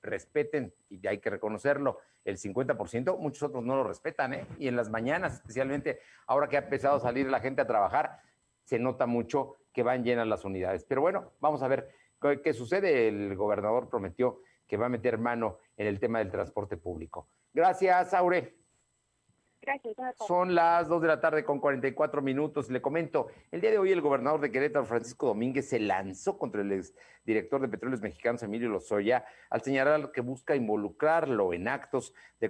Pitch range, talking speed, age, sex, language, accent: 115-150 Hz, 185 wpm, 50-69, male, Spanish, Mexican